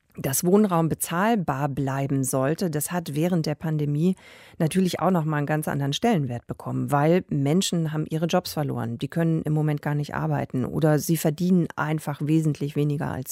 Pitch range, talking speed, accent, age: 150-190 Hz, 175 wpm, German, 40-59